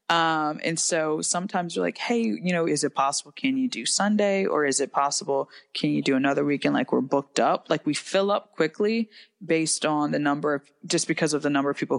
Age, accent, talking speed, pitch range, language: 20-39, American, 230 wpm, 140-165 Hz, English